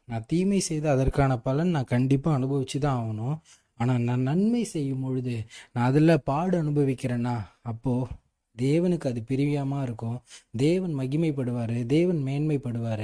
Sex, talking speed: male, 130 wpm